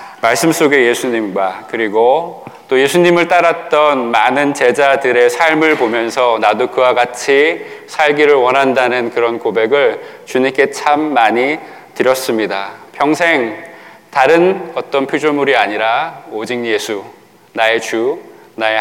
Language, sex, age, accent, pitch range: Korean, male, 20-39, native, 130-175 Hz